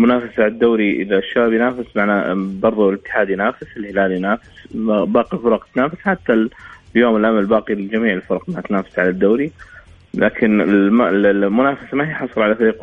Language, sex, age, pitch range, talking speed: Arabic, male, 20-39, 100-120 Hz, 155 wpm